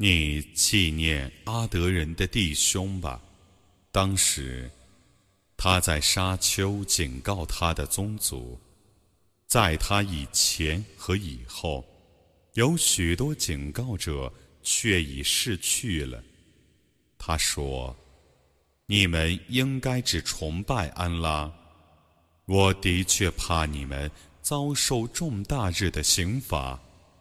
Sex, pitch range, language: male, 75-100 Hz, Arabic